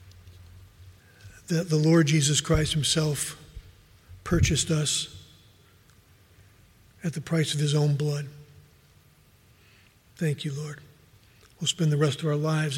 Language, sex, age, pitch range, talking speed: English, male, 50-69, 110-160 Hz, 115 wpm